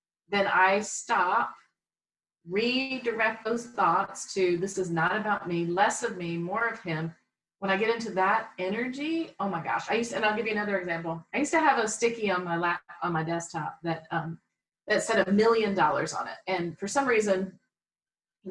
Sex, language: female, English